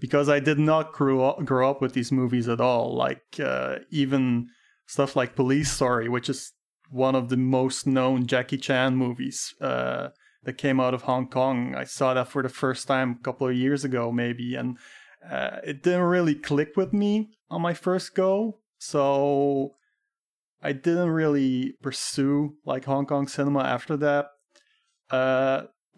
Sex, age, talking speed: male, 30-49, 170 wpm